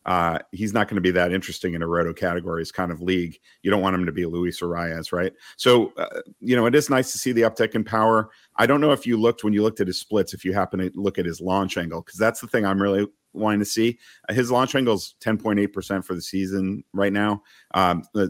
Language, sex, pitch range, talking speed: English, male, 90-100 Hz, 255 wpm